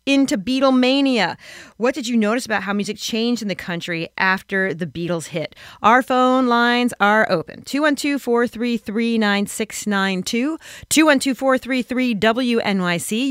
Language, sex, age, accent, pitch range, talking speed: English, female, 40-59, American, 185-250 Hz, 110 wpm